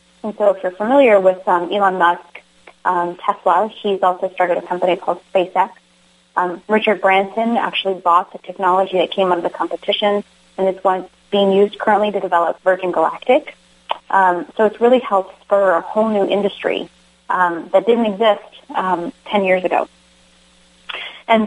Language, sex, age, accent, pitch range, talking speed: English, female, 30-49, American, 180-210 Hz, 165 wpm